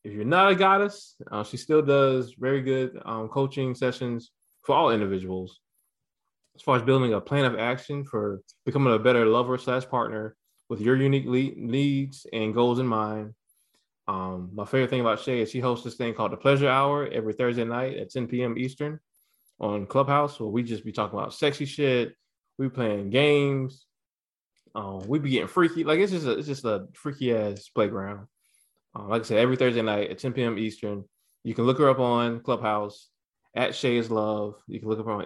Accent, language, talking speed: American, English, 195 wpm